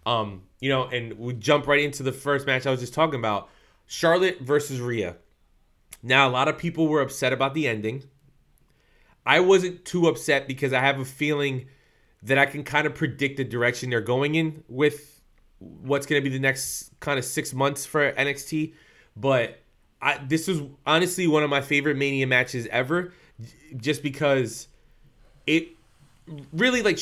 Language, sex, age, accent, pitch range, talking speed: English, male, 20-39, American, 125-150 Hz, 175 wpm